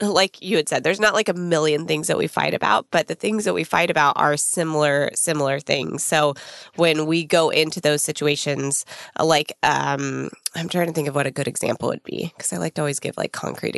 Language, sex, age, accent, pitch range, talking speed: English, female, 20-39, American, 150-190 Hz, 230 wpm